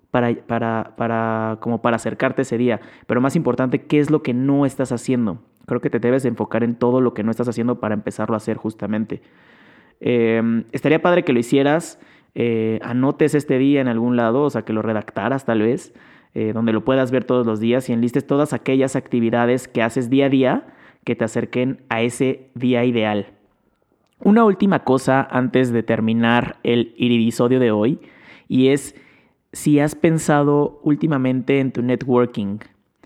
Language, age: Spanish, 30-49